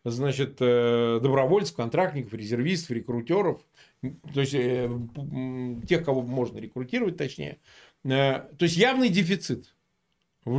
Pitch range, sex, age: 130-190 Hz, male, 40-59